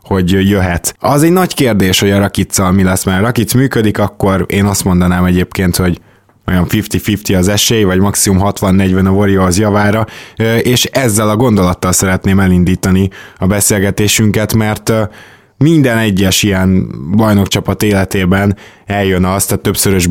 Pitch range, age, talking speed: 95-110 Hz, 20-39, 145 wpm